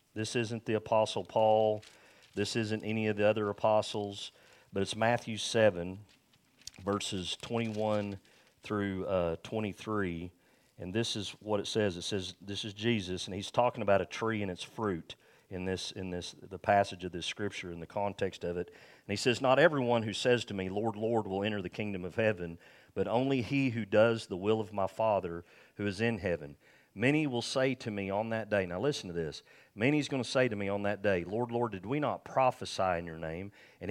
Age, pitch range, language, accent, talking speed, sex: 40-59, 95-110 Hz, English, American, 205 wpm, male